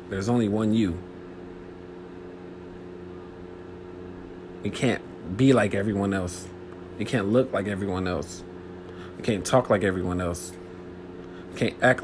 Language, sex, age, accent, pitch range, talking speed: English, male, 40-59, American, 90-100 Hz, 125 wpm